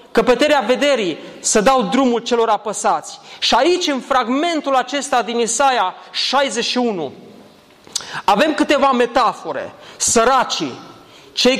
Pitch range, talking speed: 200-275 Hz, 105 wpm